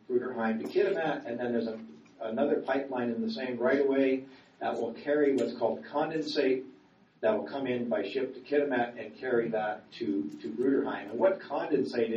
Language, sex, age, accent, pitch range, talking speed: English, male, 50-69, American, 115-145 Hz, 180 wpm